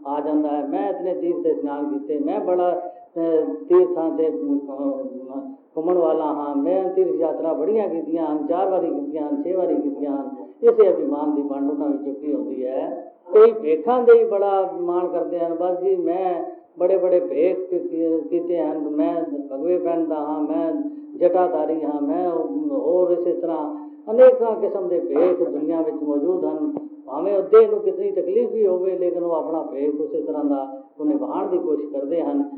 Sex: female